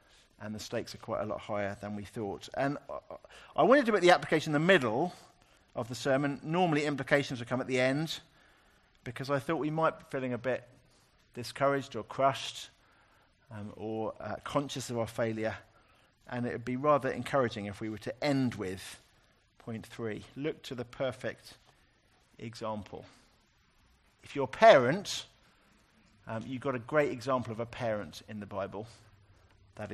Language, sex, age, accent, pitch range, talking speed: English, male, 50-69, British, 110-145 Hz, 170 wpm